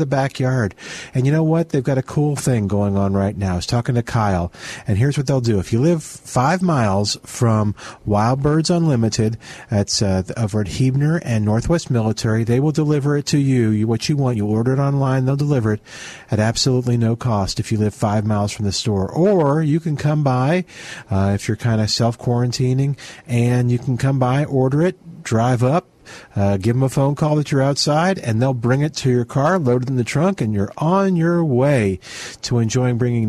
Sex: male